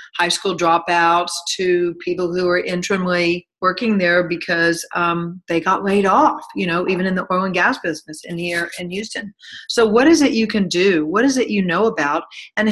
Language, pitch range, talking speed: English, 170-200 Hz, 205 wpm